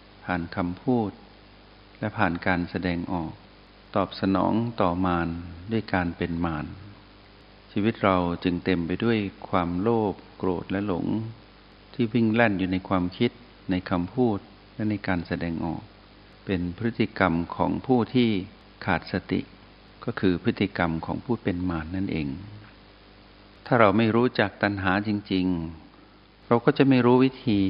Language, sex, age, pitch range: Thai, male, 60-79, 95-110 Hz